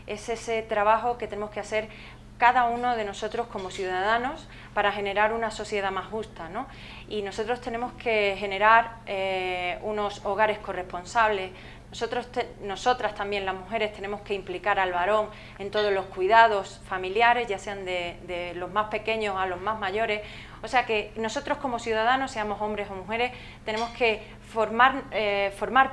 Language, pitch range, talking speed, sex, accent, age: Spanish, 190-220 Hz, 155 wpm, female, Spanish, 30-49